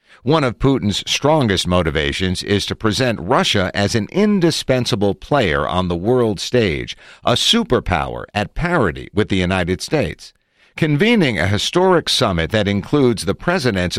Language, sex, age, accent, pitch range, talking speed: English, male, 50-69, American, 90-130 Hz, 140 wpm